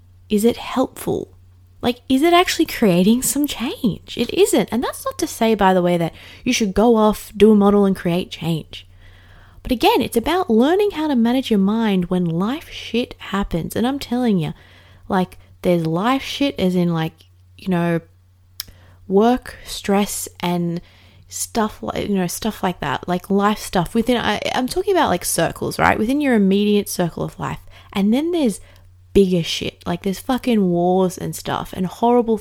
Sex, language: female, English